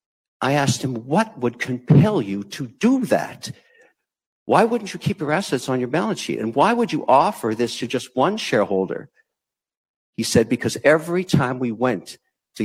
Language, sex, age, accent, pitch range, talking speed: English, male, 60-79, American, 105-150 Hz, 180 wpm